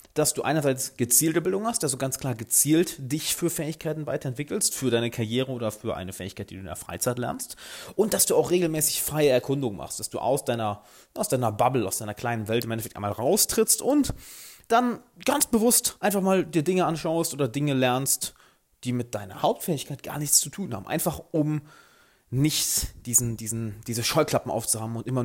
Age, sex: 30-49, male